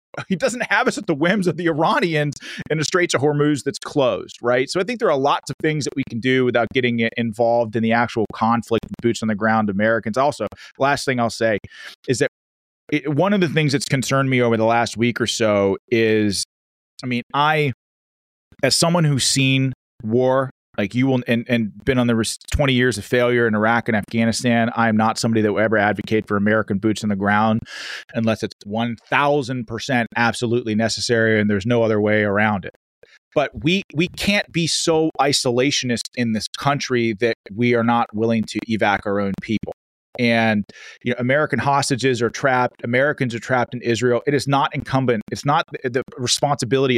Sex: male